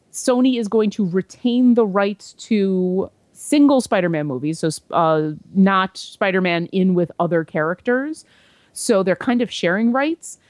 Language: English